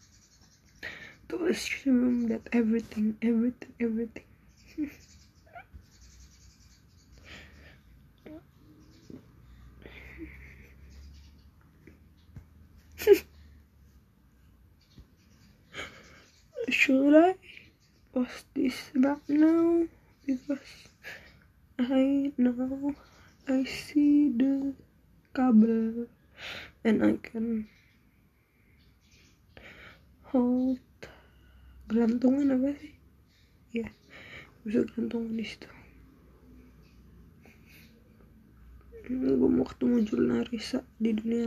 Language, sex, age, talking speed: Indonesian, female, 20-39, 55 wpm